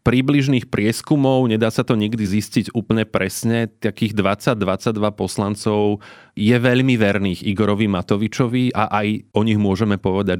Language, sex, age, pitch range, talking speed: Slovak, male, 30-49, 100-120 Hz, 135 wpm